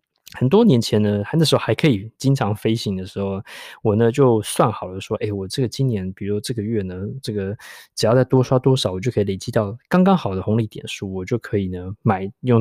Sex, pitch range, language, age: male, 100-135 Hz, Chinese, 20-39